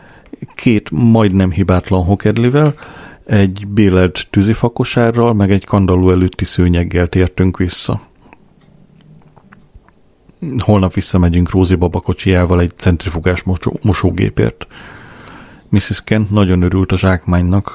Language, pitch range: Hungarian, 90-105 Hz